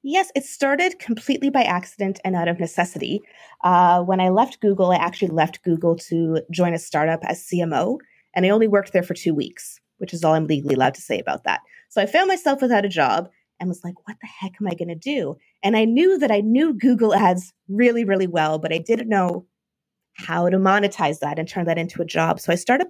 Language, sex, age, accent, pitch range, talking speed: English, female, 20-39, American, 175-235 Hz, 235 wpm